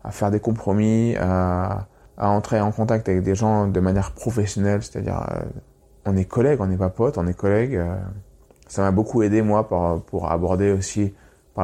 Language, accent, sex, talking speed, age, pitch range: French, French, male, 195 wpm, 20-39, 95-125 Hz